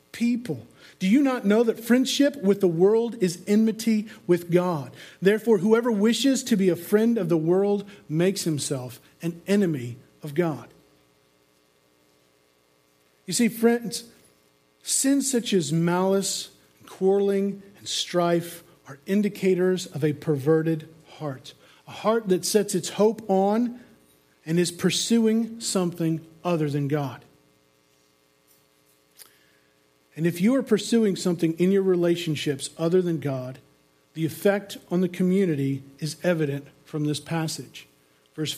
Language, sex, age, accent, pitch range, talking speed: English, male, 50-69, American, 140-205 Hz, 130 wpm